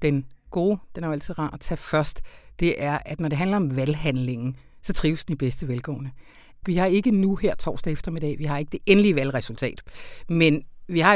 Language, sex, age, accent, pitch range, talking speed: Danish, female, 60-79, native, 130-160 Hz, 215 wpm